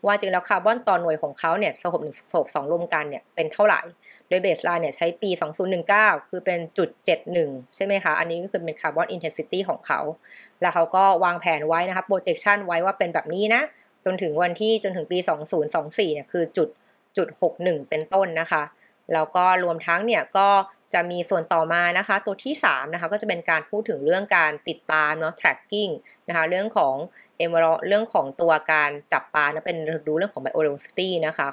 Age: 20-39